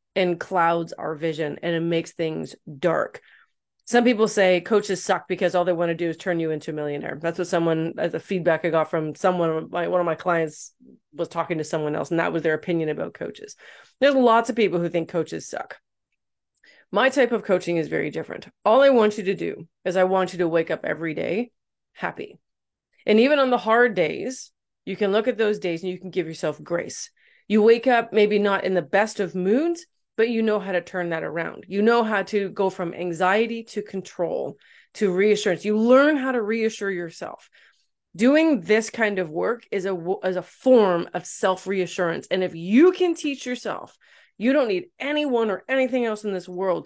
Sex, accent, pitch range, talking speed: female, American, 170-225 Hz, 210 wpm